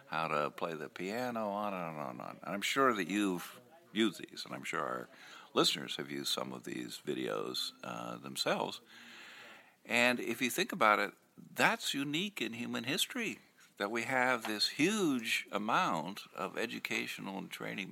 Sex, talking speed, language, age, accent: male, 165 wpm, English, 60-79, American